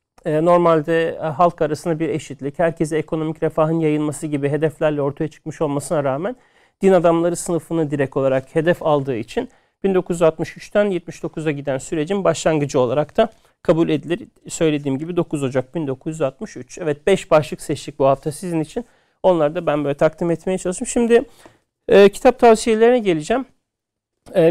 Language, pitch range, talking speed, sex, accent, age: Turkish, 155-185 Hz, 140 wpm, male, native, 40-59